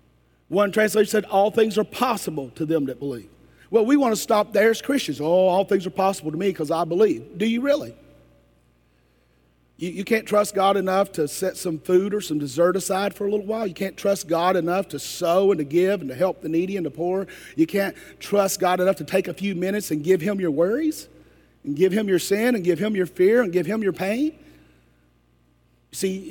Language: English